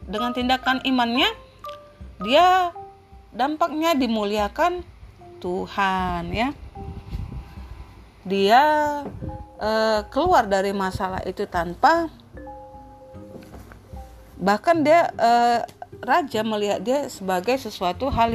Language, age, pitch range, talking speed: Indonesian, 30-49, 200-300 Hz, 80 wpm